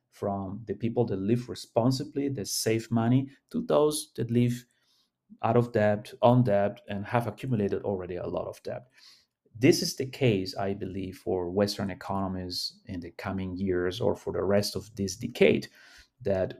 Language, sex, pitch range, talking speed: English, male, 100-125 Hz, 170 wpm